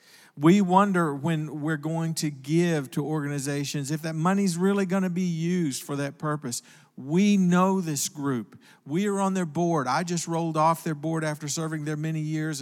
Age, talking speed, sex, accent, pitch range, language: 50-69, 185 wpm, male, American, 140-170 Hz, English